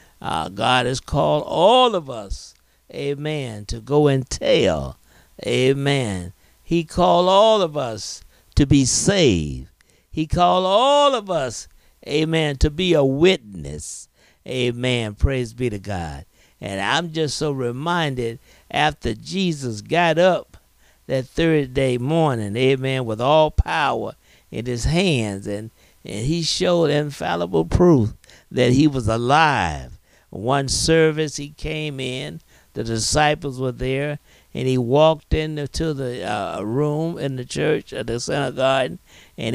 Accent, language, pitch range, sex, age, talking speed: American, English, 115-160 Hz, male, 50-69, 135 wpm